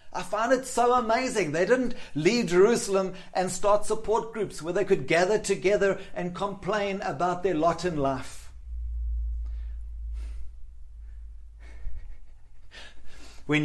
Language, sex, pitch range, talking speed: English, male, 130-190 Hz, 115 wpm